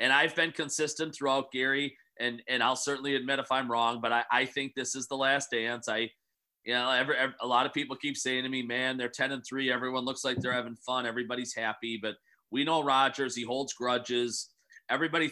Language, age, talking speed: English, 30-49, 225 wpm